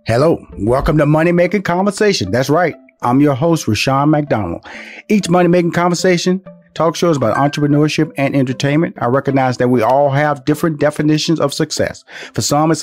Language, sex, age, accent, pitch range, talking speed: English, male, 40-59, American, 115-155 Hz, 170 wpm